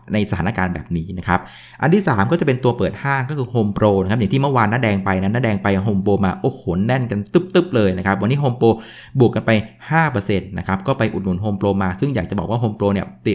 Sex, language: male, Thai